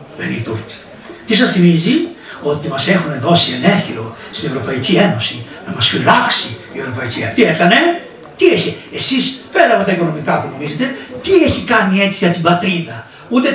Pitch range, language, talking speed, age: 155-215 Hz, Greek, 160 wpm, 60-79